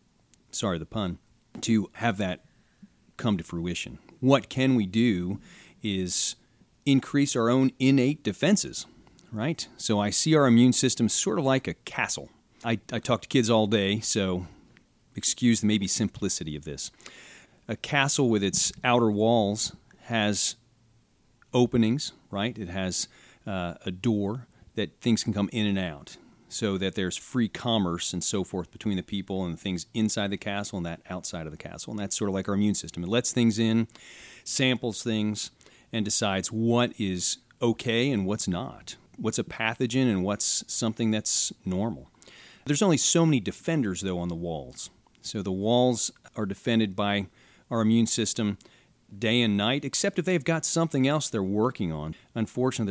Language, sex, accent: English, male, American